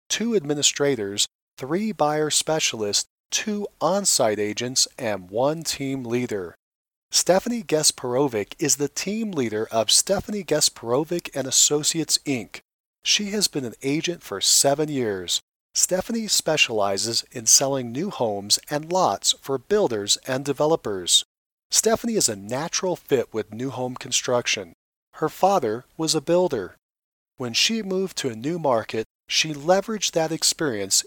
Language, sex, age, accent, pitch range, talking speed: English, male, 40-59, American, 120-175 Hz, 130 wpm